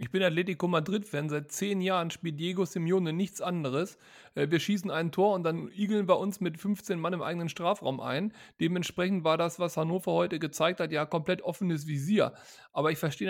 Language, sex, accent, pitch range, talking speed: German, male, German, 165-200 Hz, 190 wpm